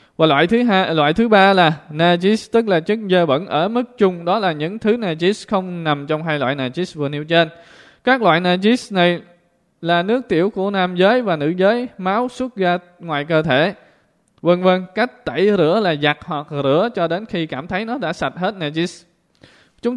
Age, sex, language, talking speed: 20-39, male, Vietnamese, 210 wpm